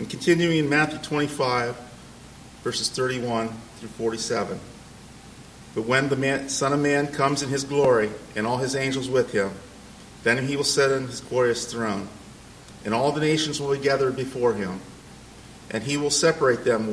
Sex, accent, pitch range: male, American, 115-140 Hz